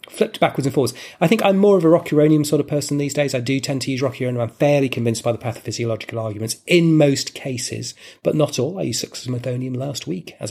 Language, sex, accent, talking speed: English, male, British, 235 wpm